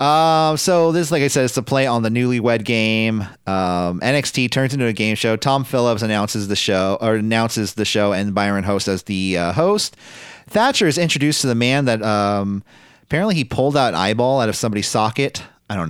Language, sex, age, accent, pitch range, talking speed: English, male, 30-49, American, 95-130 Hz, 210 wpm